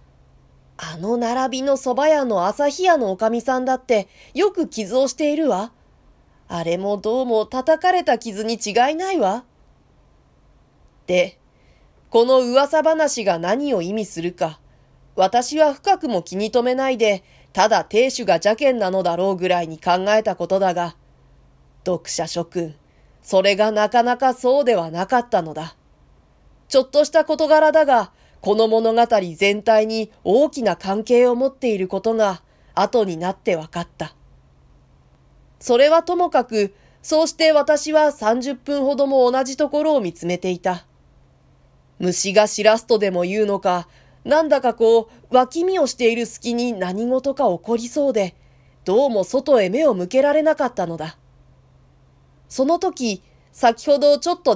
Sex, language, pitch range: female, Japanese, 185-275 Hz